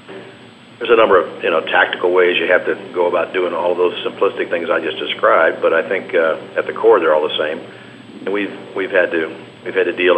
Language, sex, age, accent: English, male, 50-69, American